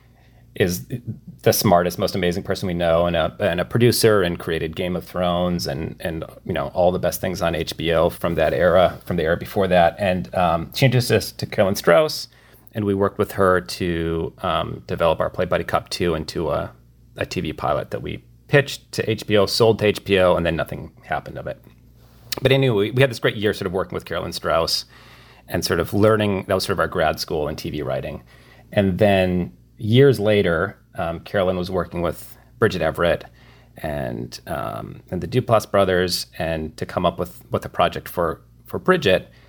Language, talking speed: English, 200 wpm